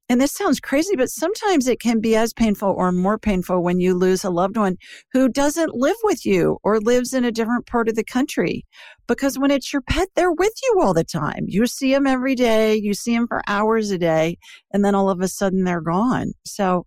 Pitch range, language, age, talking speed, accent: 175-240 Hz, English, 50-69, 235 wpm, American